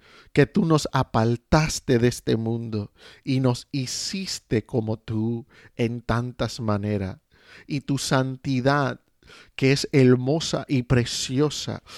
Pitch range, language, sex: 130-155 Hz, Spanish, male